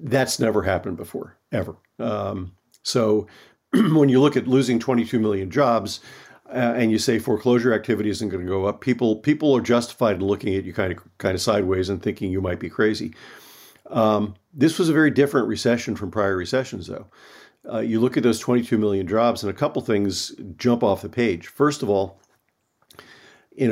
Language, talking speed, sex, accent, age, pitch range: English, 190 wpm, male, American, 50-69, 100-115 Hz